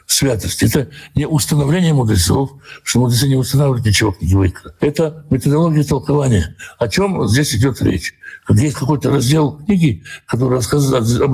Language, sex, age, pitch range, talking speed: Russian, male, 60-79, 100-140 Hz, 145 wpm